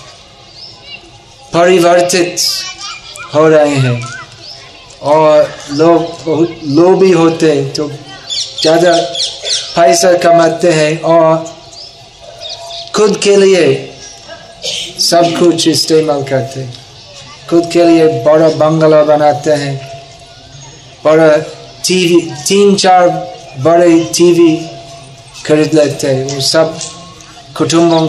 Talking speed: 95 wpm